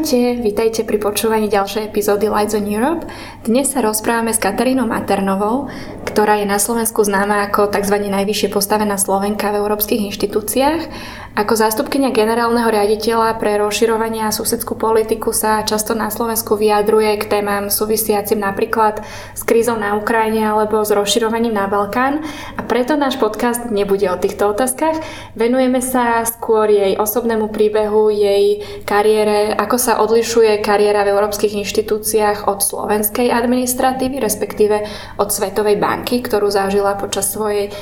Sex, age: female, 20-39